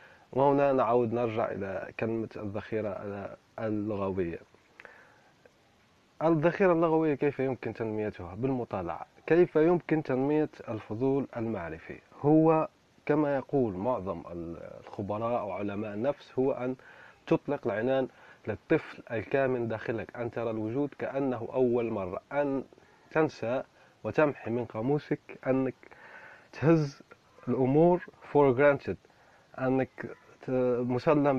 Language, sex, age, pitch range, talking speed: Arabic, male, 30-49, 115-150 Hz, 95 wpm